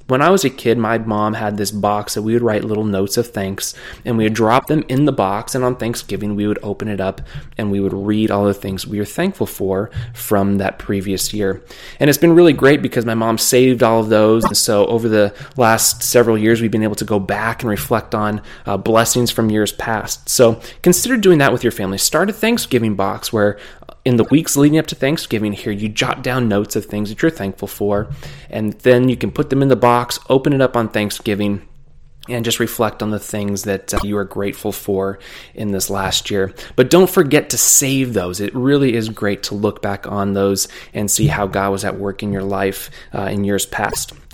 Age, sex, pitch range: 20-39, male, 100-130 Hz